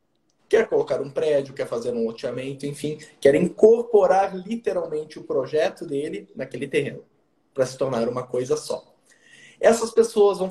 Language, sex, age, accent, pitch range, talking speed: Portuguese, male, 20-39, Brazilian, 150-225 Hz, 150 wpm